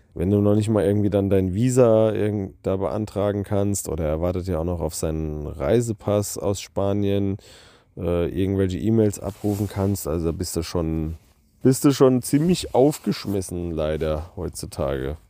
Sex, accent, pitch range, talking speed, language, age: male, German, 90-110 Hz, 145 wpm, German, 30-49